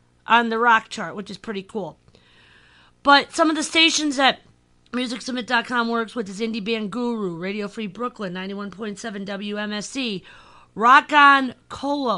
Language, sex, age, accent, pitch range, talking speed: English, female, 40-59, American, 185-270 Hz, 145 wpm